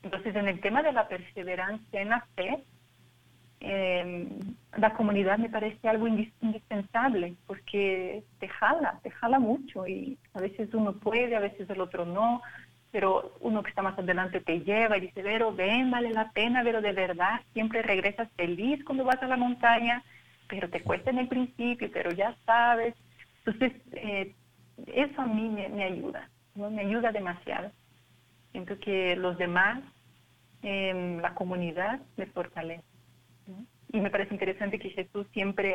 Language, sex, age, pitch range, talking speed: Spanish, female, 40-59, 185-225 Hz, 160 wpm